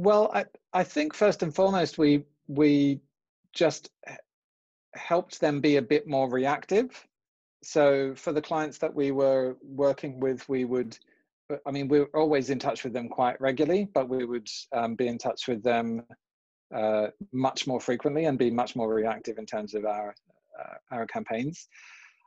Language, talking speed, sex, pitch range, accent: English, 175 wpm, male, 105-140 Hz, British